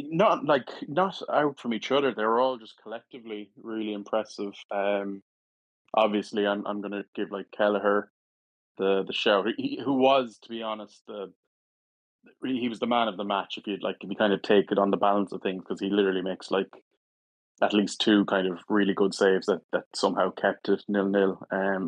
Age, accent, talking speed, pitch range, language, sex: 20-39, Irish, 205 wpm, 95-115 Hz, English, male